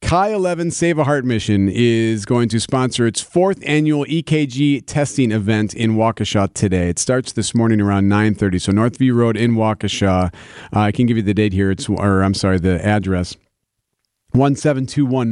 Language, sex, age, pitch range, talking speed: English, male, 40-59, 105-130 Hz, 175 wpm